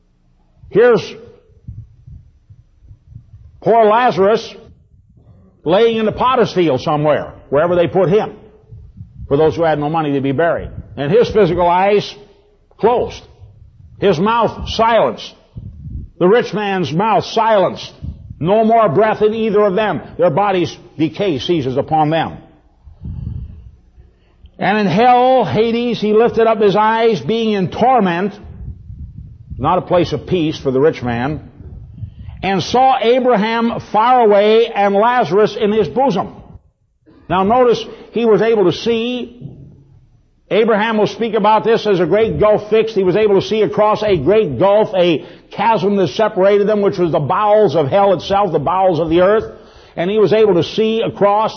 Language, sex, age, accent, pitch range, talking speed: English, male, 60-79, American, 150-220 Hz, 150 wpm